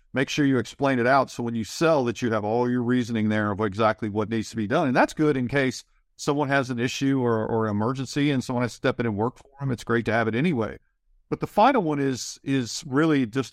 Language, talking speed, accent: English, 265 wpm, American